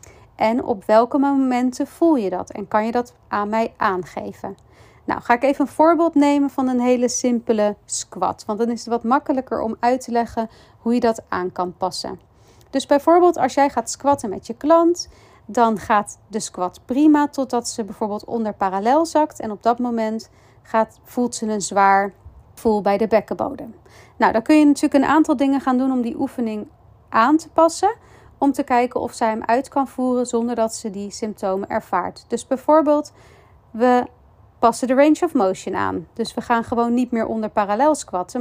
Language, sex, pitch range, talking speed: Dutch, female, 220-280 Hz, 190 wpm